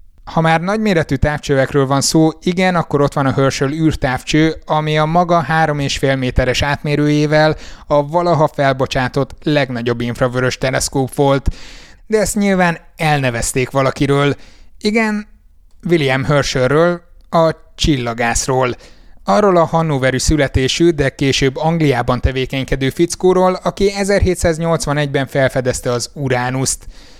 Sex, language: male, Hungarian